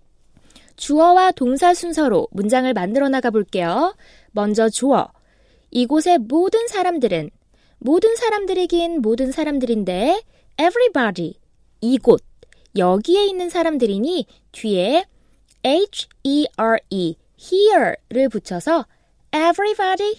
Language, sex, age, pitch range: Korean, female, 20-39, 235-370 Hz